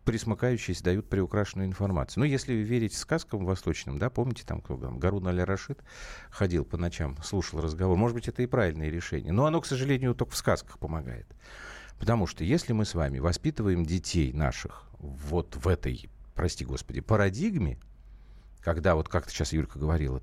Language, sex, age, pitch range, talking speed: Russian, male, 50-69, 80-115 Hz, 165 wpm